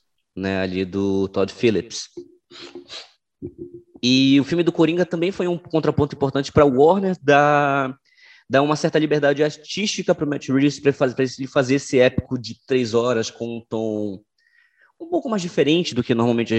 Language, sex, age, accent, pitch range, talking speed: Portuguese, male, 20-39, Brazilian, 110-160 Hz, 170 wpm